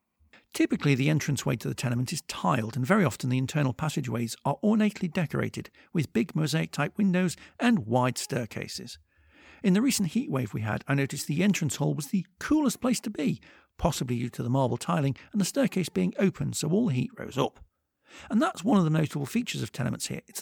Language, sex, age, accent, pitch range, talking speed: English, male, 50-69, British, 120-195 Hz, 205 wpm